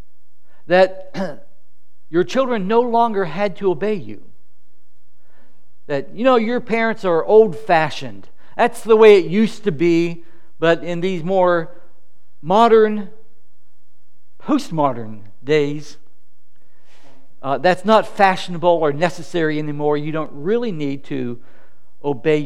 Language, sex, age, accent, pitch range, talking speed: English, male, 60-79, American, 145-205 Hz, 120 wpm